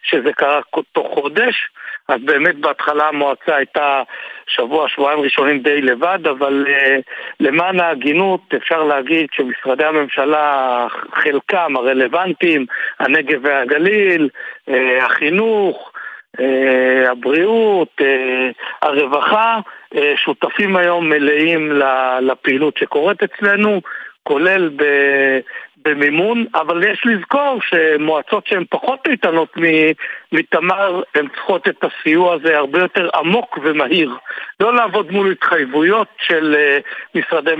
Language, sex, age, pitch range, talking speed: Hebrew, male, 60-79, 145-210 Hz, 95 wpm